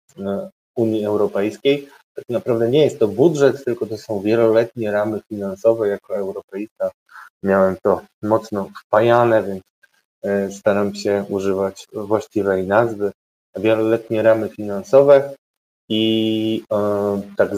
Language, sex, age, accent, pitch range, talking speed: Polish, male, 20-39, native, 100-115 Hz, 105 wpm